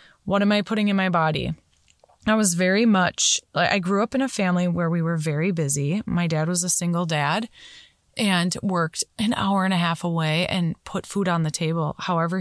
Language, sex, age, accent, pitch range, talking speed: English, female, 20-39, American, 175-210 Hz, 210 wpm